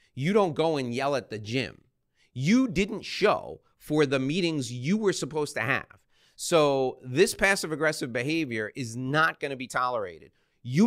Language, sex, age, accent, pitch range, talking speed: English, male, 30-49, American, 115-160 Hz, 170 wpm